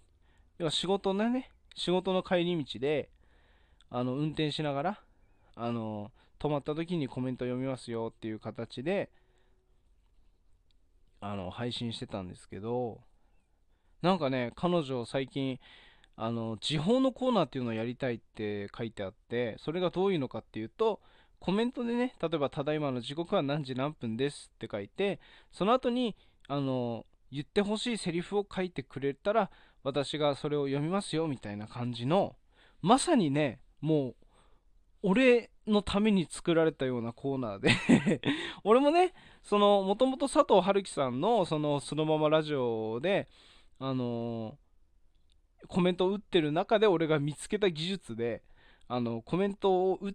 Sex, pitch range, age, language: male, 115-185 Hz, 20-39, Japanese